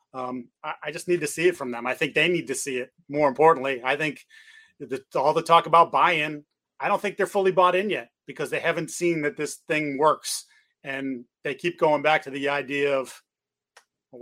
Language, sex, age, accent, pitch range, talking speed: English, male, 30-49, American, 150-180 Hz, 225 wpm